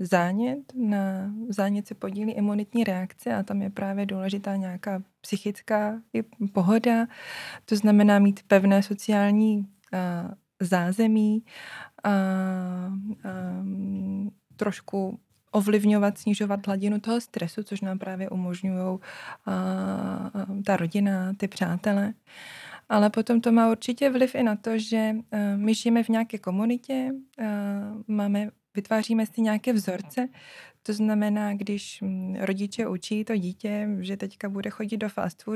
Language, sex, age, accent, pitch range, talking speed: Czech, female, 20-39, native, 190-215 Hz, 115 wpm